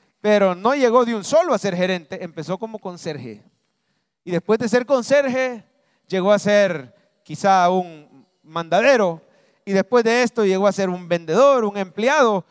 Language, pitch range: English, 175-240 Hz